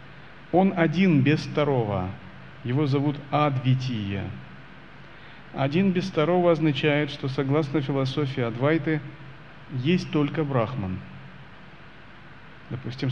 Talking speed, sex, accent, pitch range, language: 85 wpm, male, native, 125-150 Hz, Russian